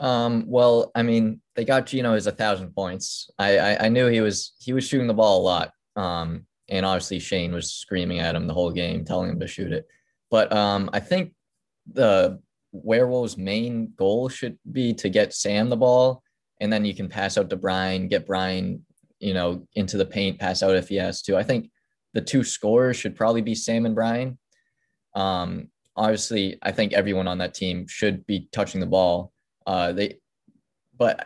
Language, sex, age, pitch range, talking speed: English, male, 20-39, 95-115 Hz, 200 wpm